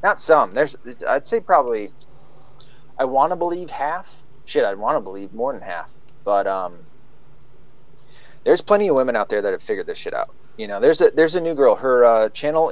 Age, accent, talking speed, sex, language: 30-49, American, 210 wpm, male, English